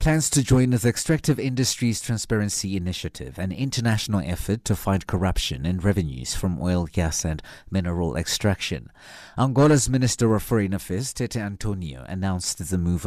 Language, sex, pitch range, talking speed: English, male, 90-115 Hz, 145 wpm